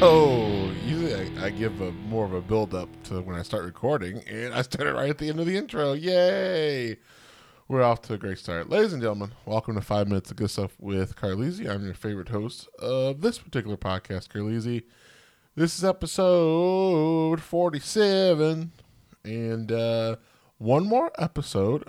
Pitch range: 110-170 Hz